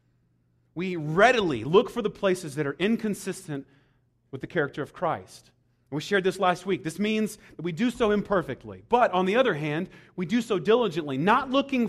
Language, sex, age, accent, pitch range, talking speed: English, male, 30-49, American, 125-195 Hz, 190 wpm